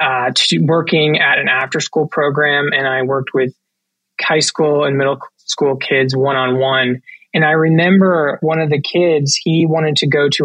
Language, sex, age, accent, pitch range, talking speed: English, male, 20-39, American, 140-175 Hz, 170 wpm